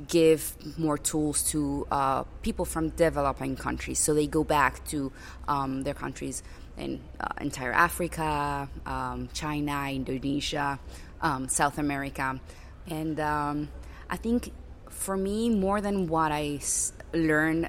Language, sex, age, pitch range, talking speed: English, female, 20-39, 145-170 Hz, 130 wpm